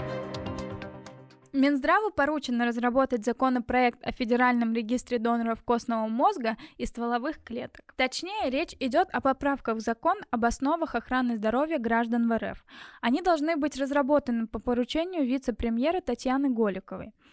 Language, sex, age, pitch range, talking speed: Russian, female, 10-29, 235-290 Hz, 125 wpm